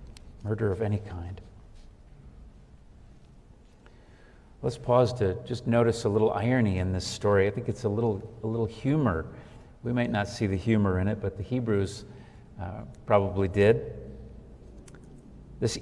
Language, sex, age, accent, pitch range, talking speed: English, male, 50-69, American, 105-135 Hz, 145 wpm